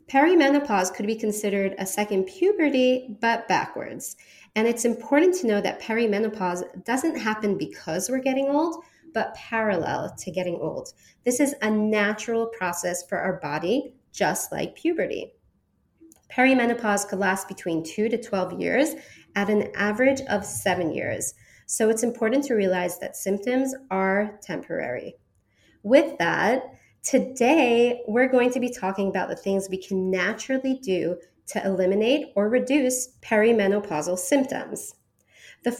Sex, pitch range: female, 185-255 Hz